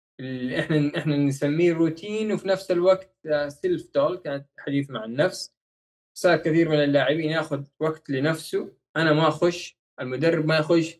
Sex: male